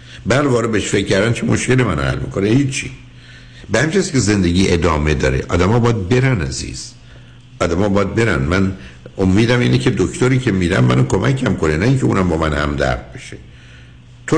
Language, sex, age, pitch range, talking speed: Persian, male, 60-79, 75-115 Hz, 175 wpm